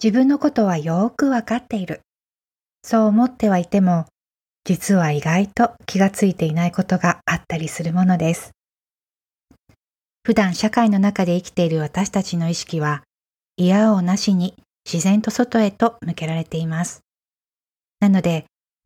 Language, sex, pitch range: Japanese, female, 170-205 Hz